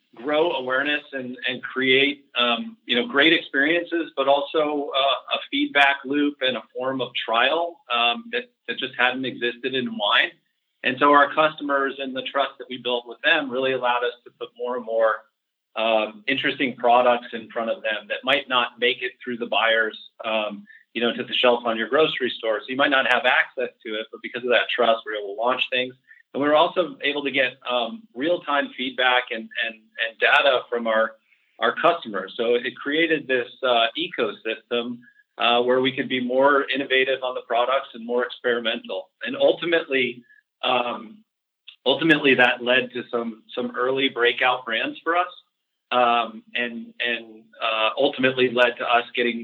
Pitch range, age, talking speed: 120-140 Hz, 40-59, 185 wpm